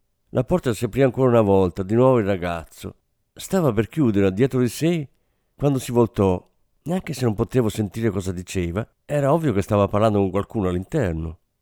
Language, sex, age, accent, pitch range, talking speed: Italian, male, 50-69, native, 95-135 Hz, 180 wpm